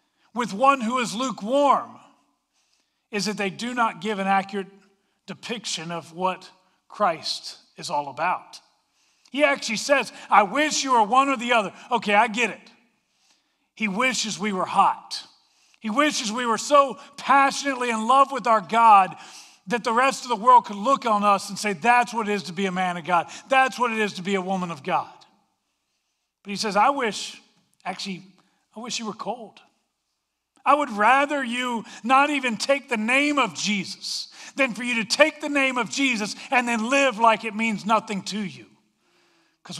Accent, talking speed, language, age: American, 185 wpm, English, 40-59